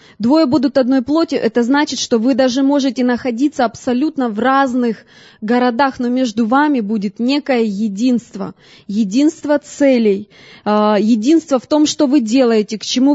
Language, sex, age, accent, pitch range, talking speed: Russian, female, 20-39, native, 225-285 Hz, 140 wpm